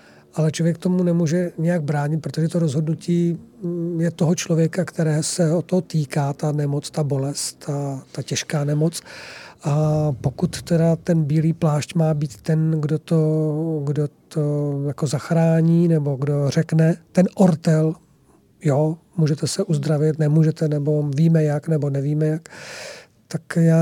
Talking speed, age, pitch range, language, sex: 145 wpm, 40-59, 155-185 Hz, Czech, male